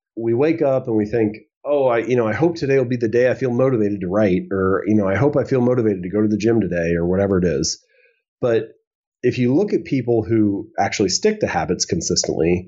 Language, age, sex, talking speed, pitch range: English, 30-49, male, 245 wpm, 90-120 Hz